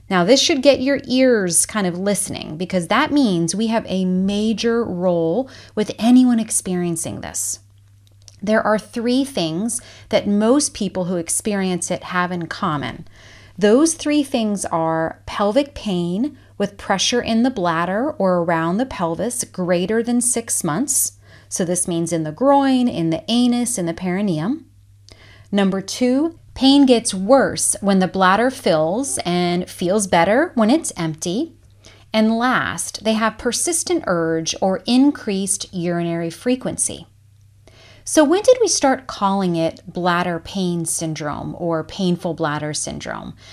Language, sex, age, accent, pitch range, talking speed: English, female, 30-49, American, 170-245 Hz, 145 wpm